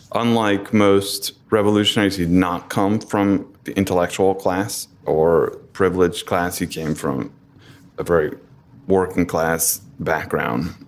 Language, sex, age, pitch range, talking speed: English, male, 30-49, 90-100 Hz, 120 wpm